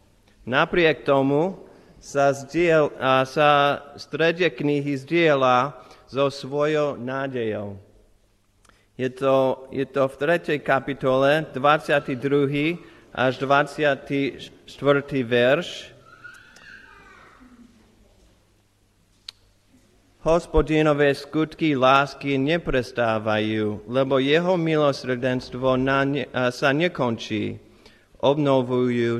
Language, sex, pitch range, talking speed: Slovak, male, 110-145 Hz, 75 wpm